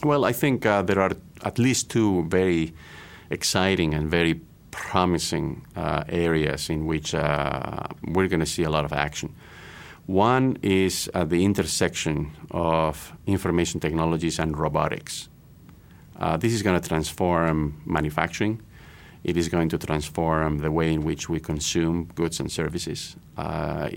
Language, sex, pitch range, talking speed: English, male, 80-90 Hz, 150 wpm